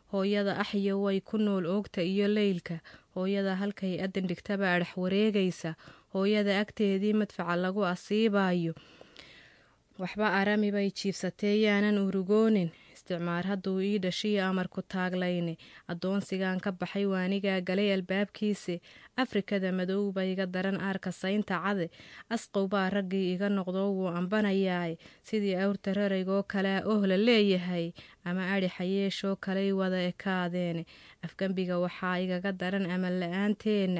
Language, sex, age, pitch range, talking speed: English, female, 20-39, 180-200 Hz, 135 wpm